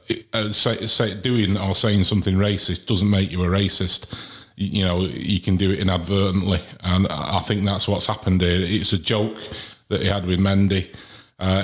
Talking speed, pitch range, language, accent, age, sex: 170 wpm, 90-105 Hz, English, British, 30-49, male